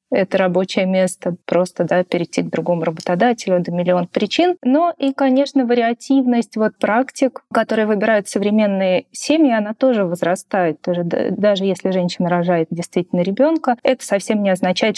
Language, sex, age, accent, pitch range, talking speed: Russian, female, 20-39, native, 175-235 Hz, 145 wpm